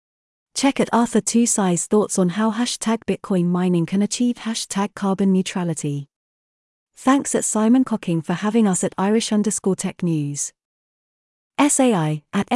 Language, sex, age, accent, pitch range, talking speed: English, female, 30-49, British, 175-230 Hz, 145 wpm